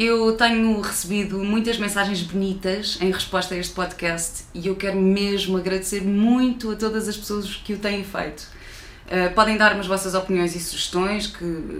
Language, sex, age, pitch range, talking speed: Portuguese, female, 20-39, 180-220 Hz, 175 wpm